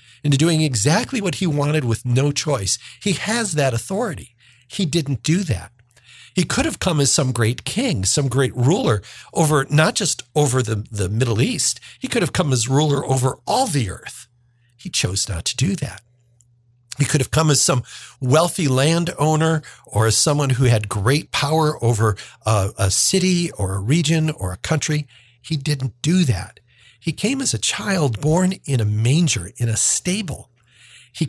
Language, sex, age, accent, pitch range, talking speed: English, male, 50-69, American, 110-145 Hz, 180 wpm